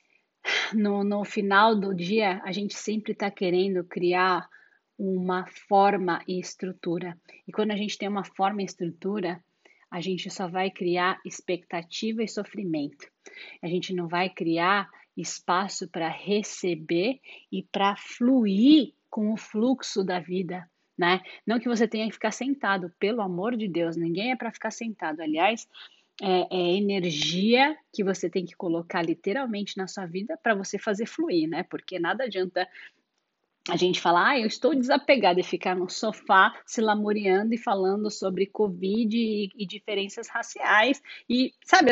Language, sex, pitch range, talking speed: Portuguese, female, 185-235 Hz, 155 wpm